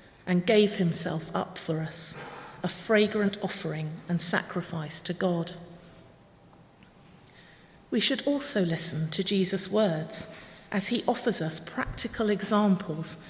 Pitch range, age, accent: 170-210 Hz, 50-69, British